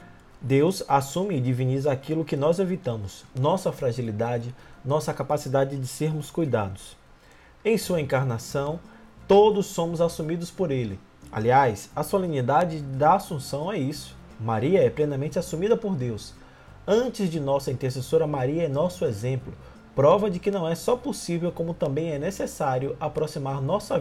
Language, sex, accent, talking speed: Portuguese, male, Brazilian, 140 wpm